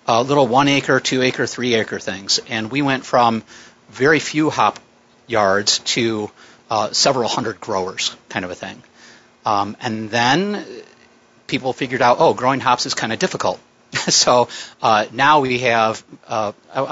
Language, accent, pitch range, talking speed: English, American, 110-130 Hz, 150 wpm